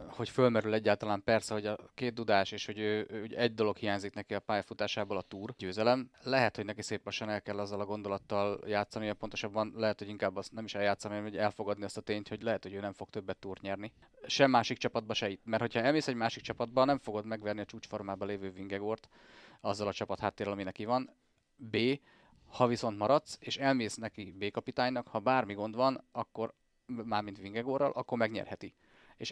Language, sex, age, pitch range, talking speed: Hungarian, male, 30-49, 100-115 Hz, 200 wpm